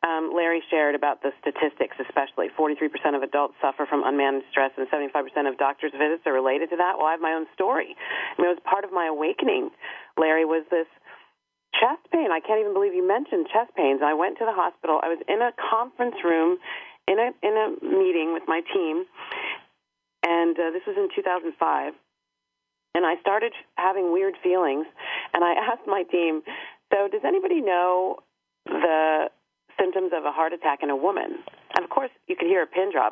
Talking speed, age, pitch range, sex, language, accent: 200 wpm, 40-59, 145-180 Hz, female, English, American